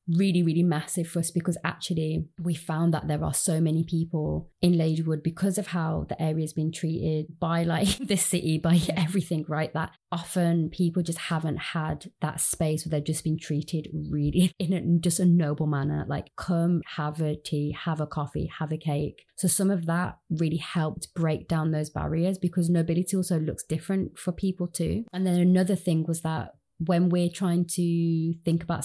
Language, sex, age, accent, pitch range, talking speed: English, female, 20-39, British, 155-175 Hz, 190 wpm